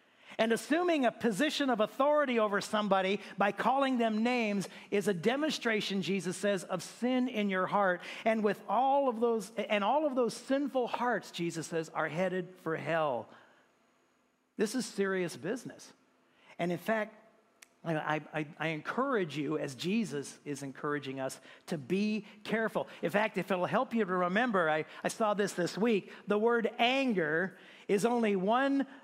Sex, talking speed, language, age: male, 165 wpm, English, 50-69